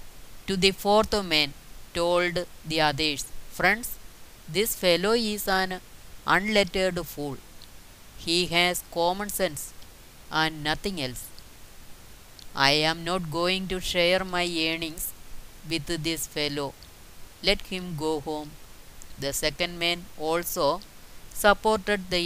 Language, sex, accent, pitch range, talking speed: Malayalam, female, native, 150-200 Hz, 115 wpm